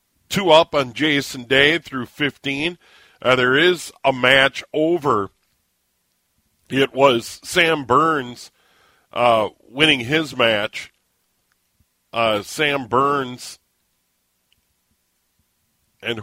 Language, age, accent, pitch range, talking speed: English, 50-69, American, 105-145 Hz, 90 wpm